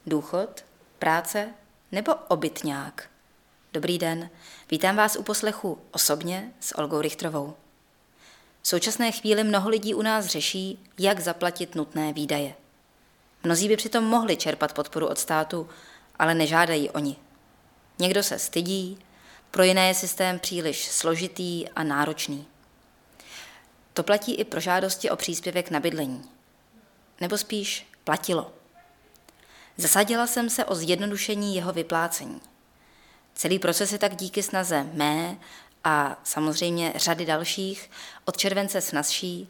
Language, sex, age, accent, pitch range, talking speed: Czech, female, 20-39, native, 155-195 Hz, 125 wpm